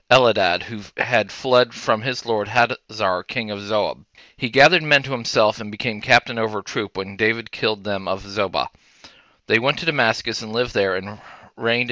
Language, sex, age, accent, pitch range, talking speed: English, male, 40-59, American, 105-120 Hz, 185 wpm